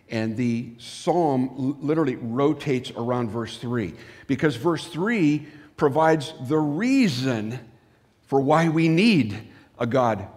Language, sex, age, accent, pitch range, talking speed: English, male, 50-69, American, 125-160 Hz, 115 wpm